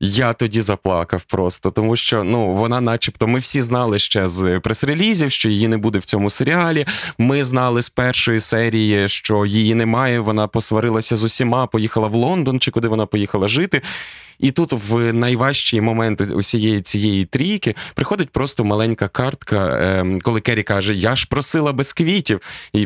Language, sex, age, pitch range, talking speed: Ukrainian, male, 20-39, 105-135 Hz, 170 wpm